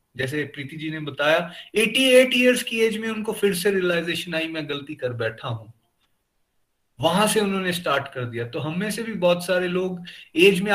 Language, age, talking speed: Hindi, 30-49, 200 wpm